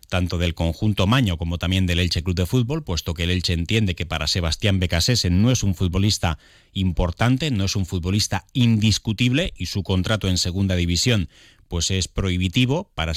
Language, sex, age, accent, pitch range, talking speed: Spanish, male, 30-49, Spanish, 85-110 Hz, 180 wpm